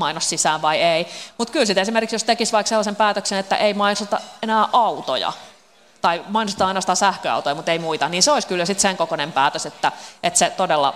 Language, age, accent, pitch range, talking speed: Finnish, 30-49, native, 155-200 Hz, 205 wpm